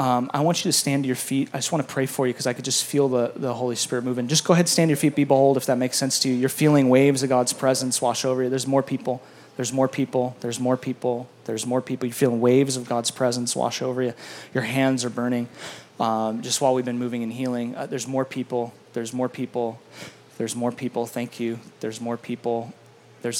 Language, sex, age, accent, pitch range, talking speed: English, male, 20-39, American, 120-135 Hz, 250 wpm